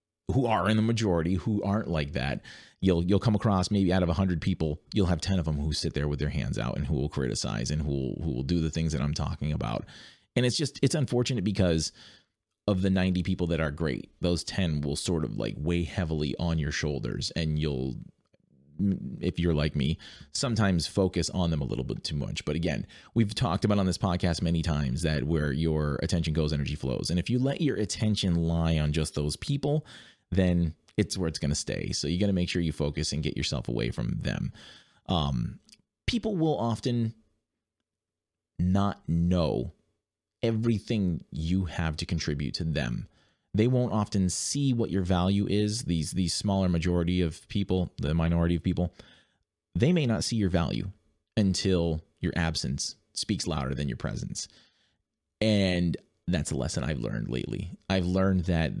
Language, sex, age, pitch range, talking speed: English, male, 30-49, 80-100 Hz, 195 wpm